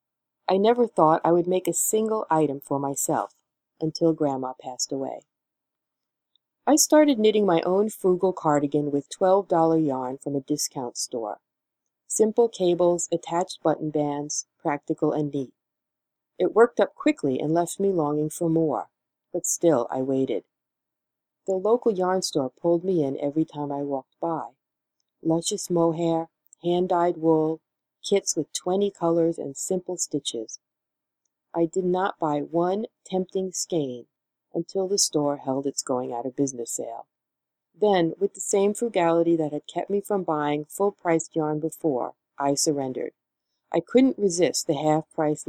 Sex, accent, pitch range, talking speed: female, American, 145-185 Hz, 145 wpm